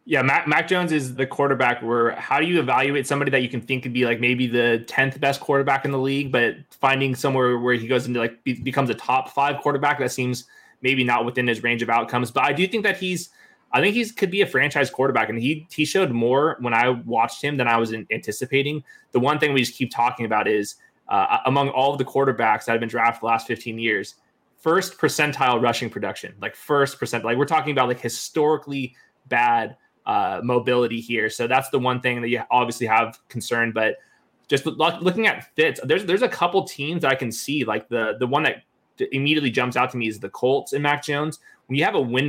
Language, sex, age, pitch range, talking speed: English, male, 20-39, 120-145 Hz, 235 wpm